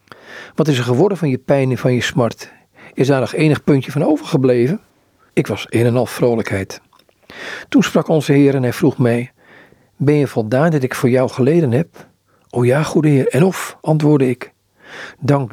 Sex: male